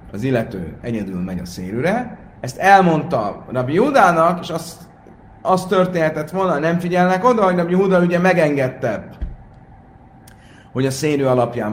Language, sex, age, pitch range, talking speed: Hungarian, male, 30-49, 90-130 Hz, 145 wpm